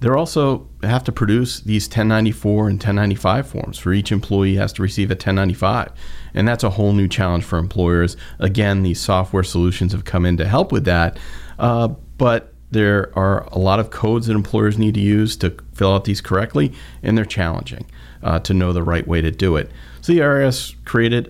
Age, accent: 40-59, American